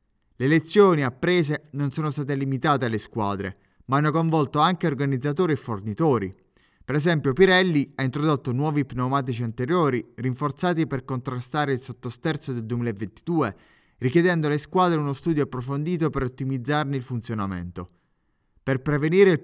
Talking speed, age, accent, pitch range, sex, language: 135 wpm, 20-39, native, 125-160 Hz, male, Italian